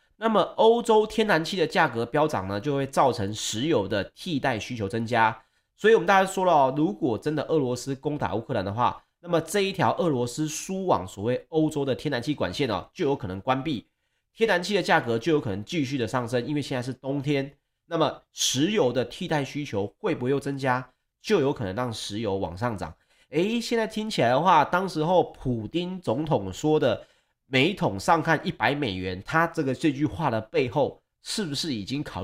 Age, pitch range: 30-49, 115-165 Hz